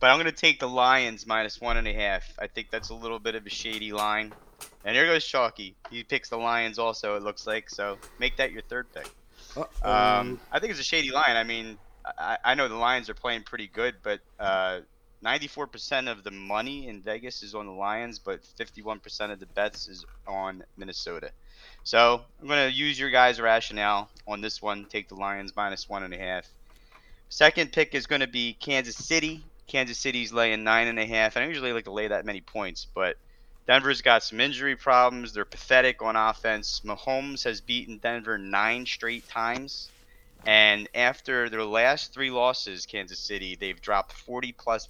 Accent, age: American, 30-49